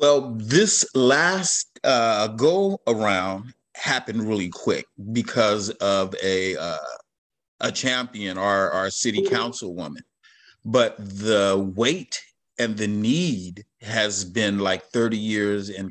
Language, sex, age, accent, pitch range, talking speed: English, male, 30-49, American, 100-120 Hz, 115 wpm